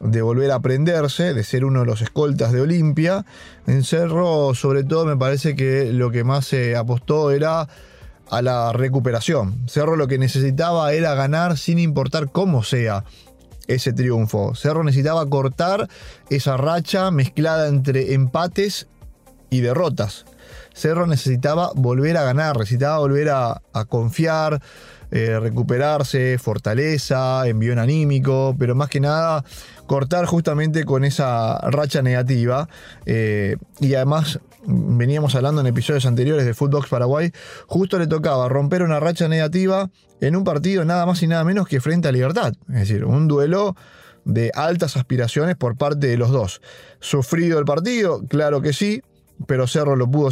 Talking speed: 150 wpm